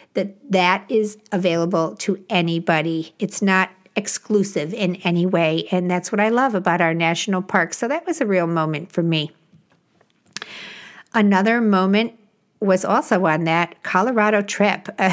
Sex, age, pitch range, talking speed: female, 50-69, 170-215 Hz, 145 wpm